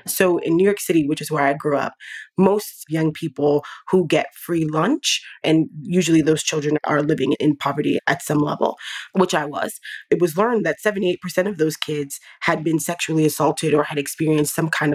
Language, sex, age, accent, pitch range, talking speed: English, female, 20-39, American, 150-180 Hz, 195 wpm